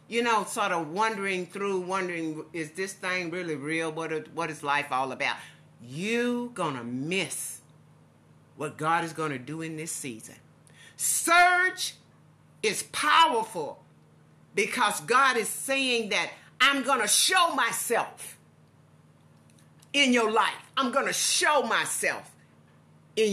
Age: 50-69